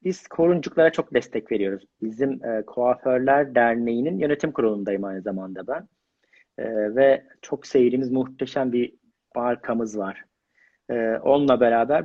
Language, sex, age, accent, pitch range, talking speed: Turkish, male, 40-59, native, 120-145 Hz, 125 wpm